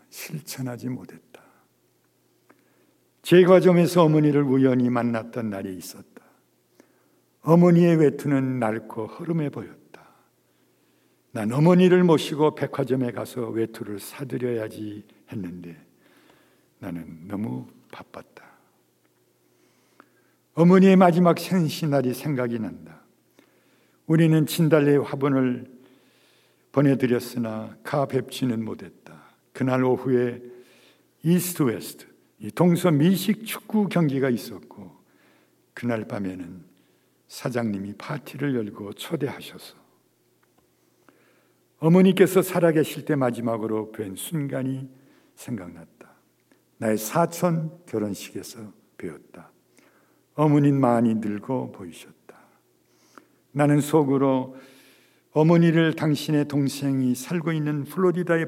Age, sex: 60-79, male